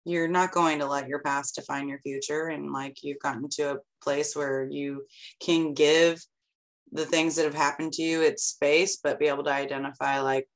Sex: female